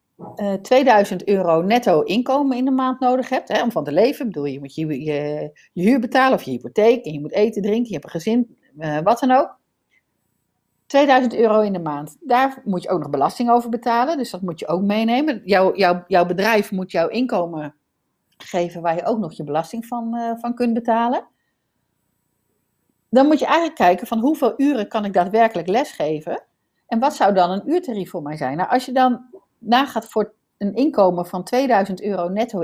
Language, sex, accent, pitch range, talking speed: Dutch, female, Dutch, 175-245 Hz, 200 wpm